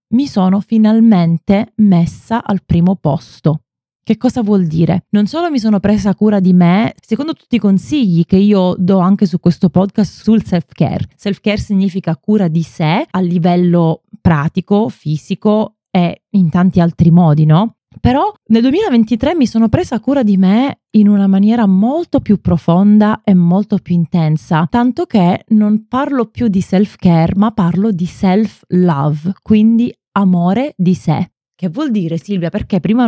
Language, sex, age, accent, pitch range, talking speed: Italian, female, 20-39, native, 170-215 Hz, 160 wpm